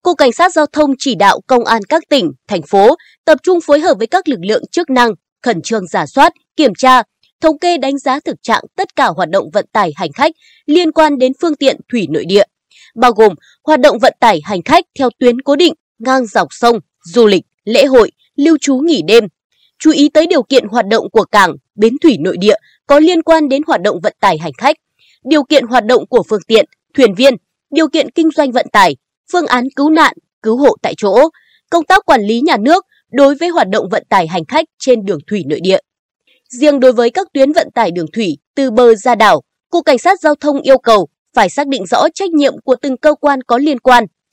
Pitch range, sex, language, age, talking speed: 230-315 Hz, female, Vietnamese, 20-39, 235 wpm